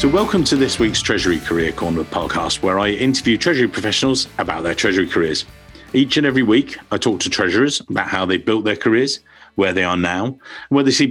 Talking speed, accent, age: 215 wpm, British, 50-69